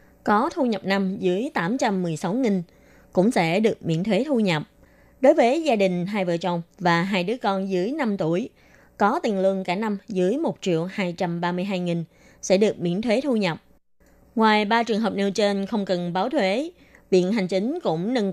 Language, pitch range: Vietnamese, 180-220 Hz